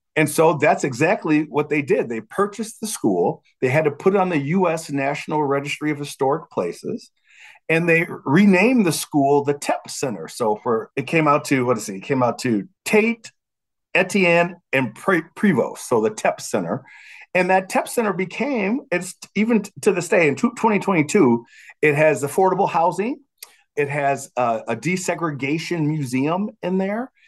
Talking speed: 170 wpm